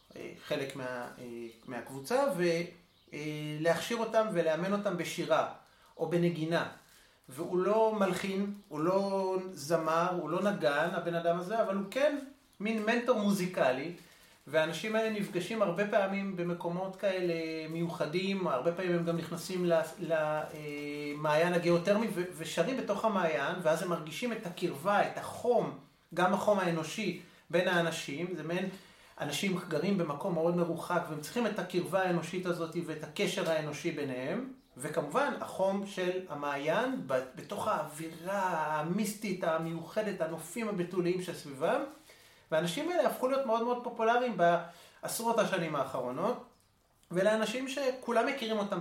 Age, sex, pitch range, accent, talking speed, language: 30-49, male, 165-200 Hz, native, 125 wpm, Hebrew